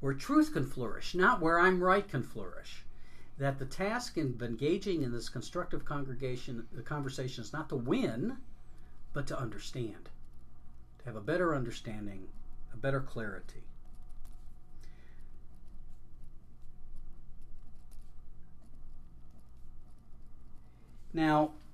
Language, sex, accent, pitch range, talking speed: English, male, American, 95-145 Hz, 100 wpm